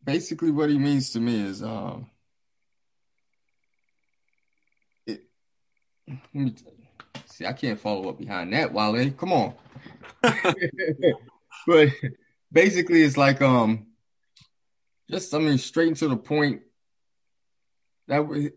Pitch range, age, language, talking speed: 105-140 Hz, 20-39, English, 115 wpm